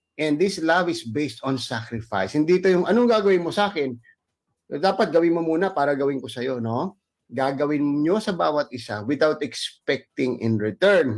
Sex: male